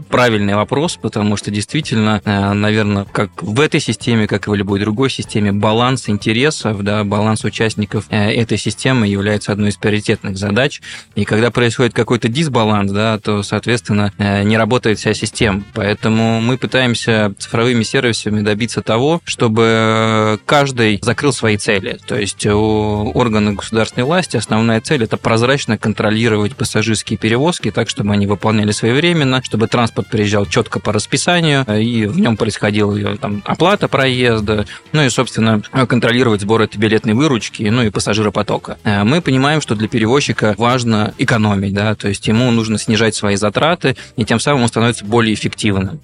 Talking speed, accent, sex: 150 wpm, native, male